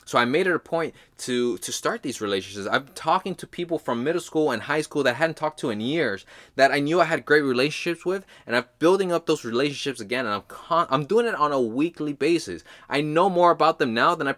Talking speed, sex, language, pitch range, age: 250 wpm, male, English, 120-165 Hz, 20-39